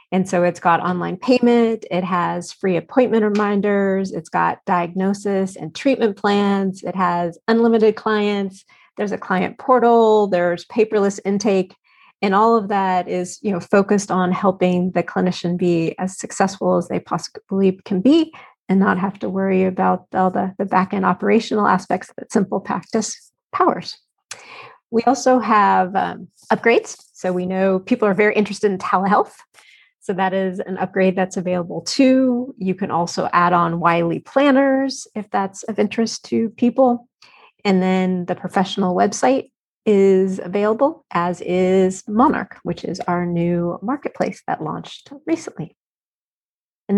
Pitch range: 185-230 Hz